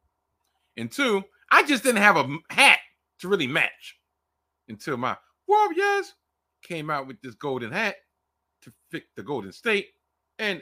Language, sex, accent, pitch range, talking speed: English, male, American, 80-100 Hz, 145 wpm